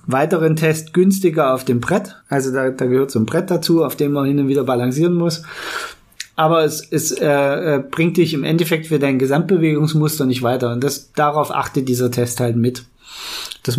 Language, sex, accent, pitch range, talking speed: German, male, German, 135-170 Hz, 190 wpm